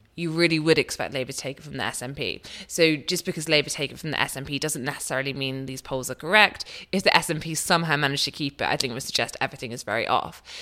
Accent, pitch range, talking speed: British, 135-165 Hz, 250 wpm